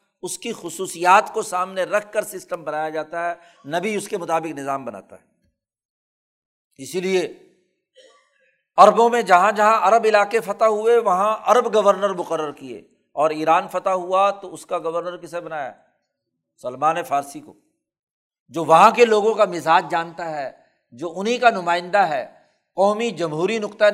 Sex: male